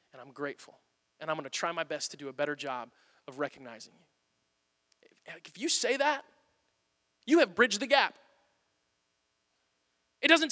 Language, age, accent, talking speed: English, 20-39, American, 160 wpm